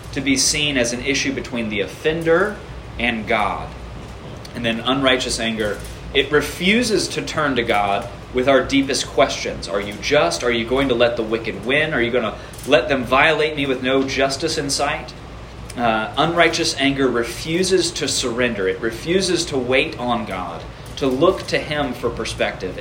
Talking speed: 175 wpm